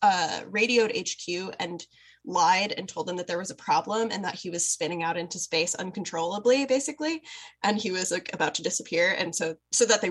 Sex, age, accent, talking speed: female, 10-29, American, 200 wpm